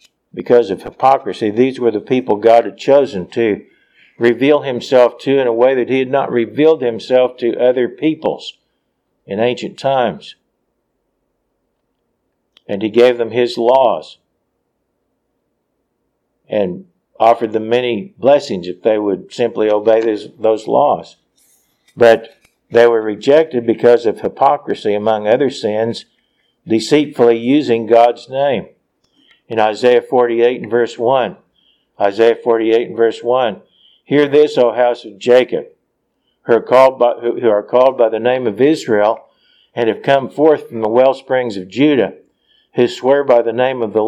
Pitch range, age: 115-130 Hz, 50-69